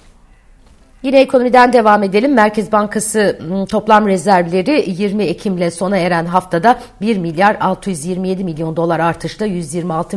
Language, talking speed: Turkish, 125 wpm